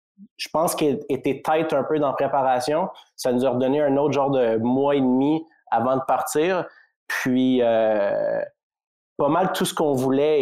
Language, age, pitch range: French, 30-49, 125-155 Hz